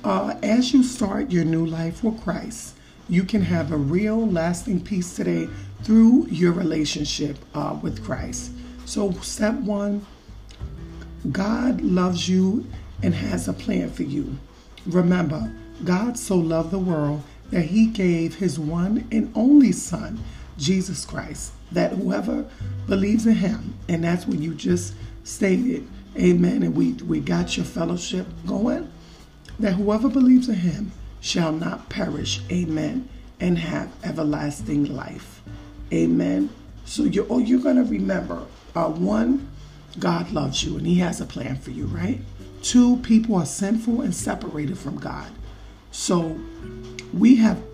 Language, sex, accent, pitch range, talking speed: English, male, American, 145-215 Hz, 145 wpm